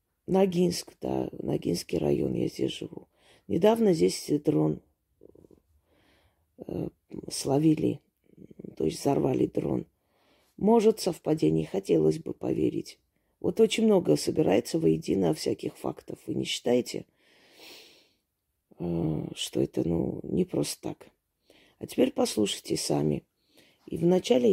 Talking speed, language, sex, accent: 105 wpm, Russian, female, native